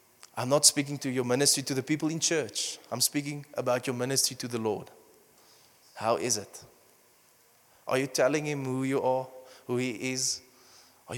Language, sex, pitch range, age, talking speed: English, male, 125-145 Hz, 20-39, 175 wpm